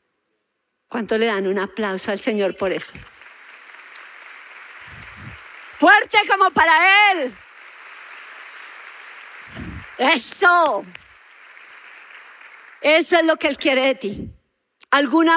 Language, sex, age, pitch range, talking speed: Spanish, female, 40-59, 240-310 Hz, 90 wpm